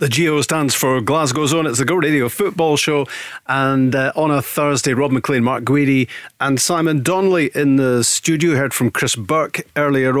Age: 40-59